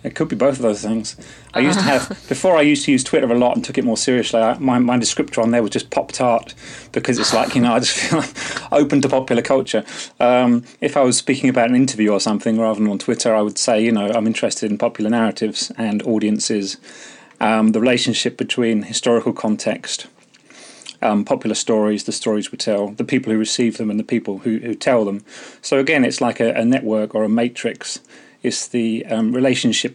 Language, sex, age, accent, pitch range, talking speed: English, male, 30-49, British, 110-130 Hz, 220 wpm